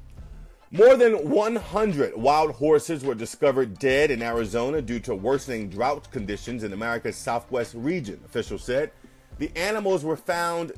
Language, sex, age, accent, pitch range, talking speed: English, male, 30-49, American, 115-165 Hz, 140 wpm